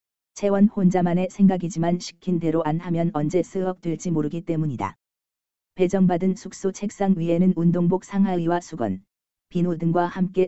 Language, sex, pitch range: Korean, female, 150-185 Hz